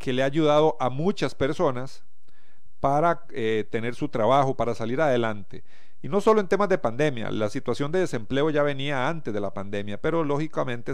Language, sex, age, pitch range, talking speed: Spanish, male, 40-59, 115-150 Hz, 185 wpm